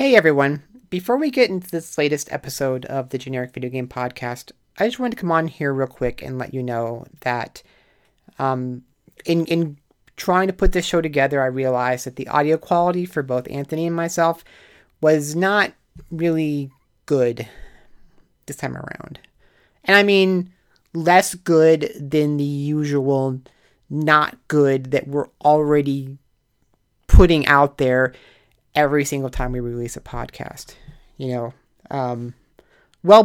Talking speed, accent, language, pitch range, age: 150 wpm, American, English, 135-170 Hz, 30-49